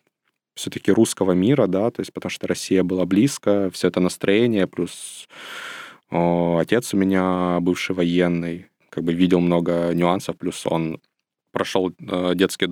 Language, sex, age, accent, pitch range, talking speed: Ukrainian, male, 20-39, native, 90-105 Hz, 145 wpm